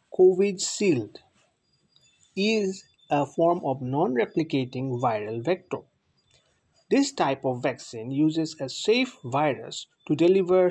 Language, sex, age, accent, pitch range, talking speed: English, male, 50-69, Indian, 130-170 Hz, 105 wpm